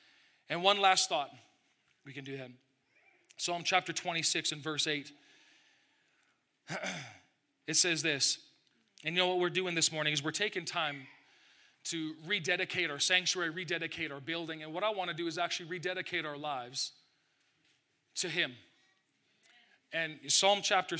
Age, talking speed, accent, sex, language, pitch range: 40-59, 150 wpm, American, male, English, 150-180 Hz